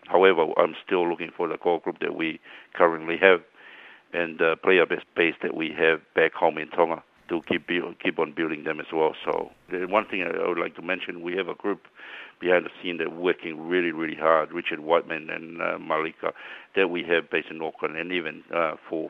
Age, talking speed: 60-79, 220 wpm